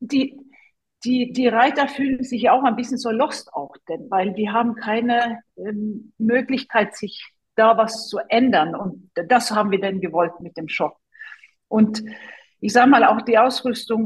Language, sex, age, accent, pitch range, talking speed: German, female, 50-69, German, 195-255 Hz, 170 wpm